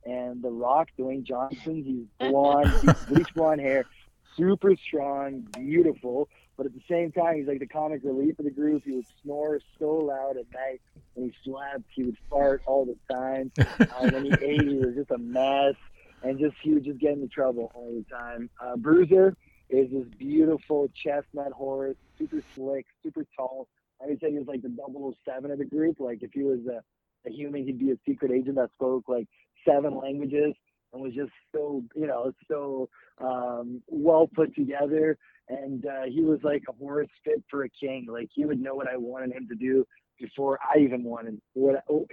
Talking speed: 200 wpm